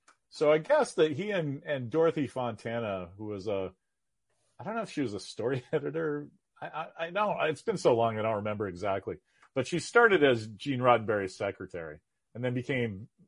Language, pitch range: English, 100-135 Hz